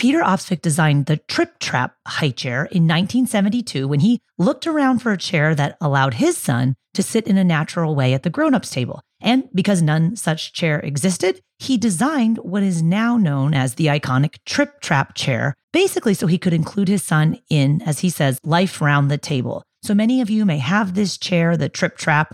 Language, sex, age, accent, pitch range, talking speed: English, female, 30-49, American, 145-190 Hz, 205 wpm